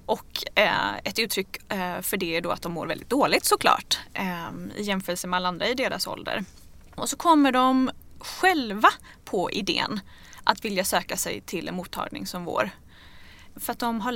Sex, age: female, 20-39